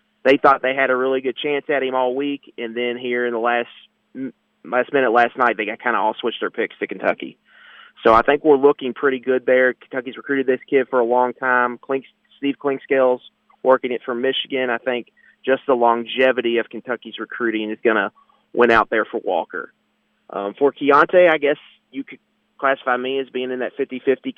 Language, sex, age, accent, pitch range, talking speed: English, male, 30-49, American, 120-145 Hz, 205 wpm